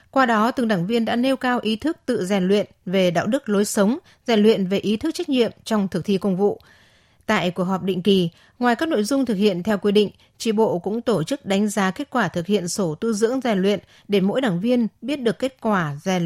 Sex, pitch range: female, 190-245 Hz